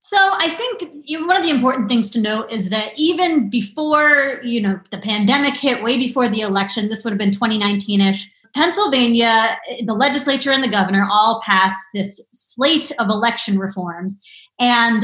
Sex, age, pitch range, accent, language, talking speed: female, 30-49, 205-270 Hz, American, English, 170 wpm